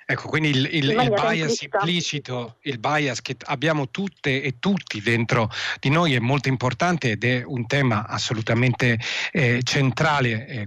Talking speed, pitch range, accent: 155 wpm, 115-150 Hz, native